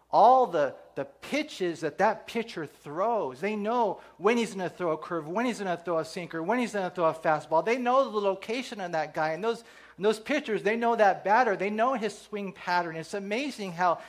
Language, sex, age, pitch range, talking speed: English, male, 40-59, 170-230 Hz, 230 wpm